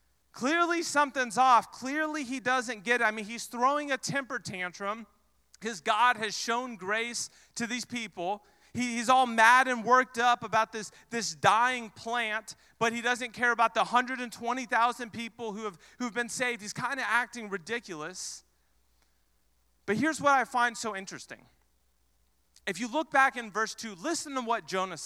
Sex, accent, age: male, American, 30-49